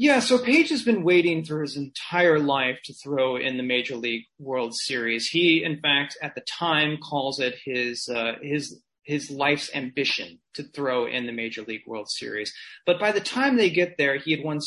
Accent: American